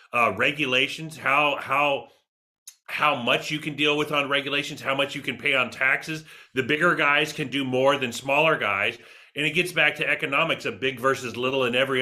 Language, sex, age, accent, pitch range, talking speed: English, male, 30-49, American, 125-145 Hz, 200 wpm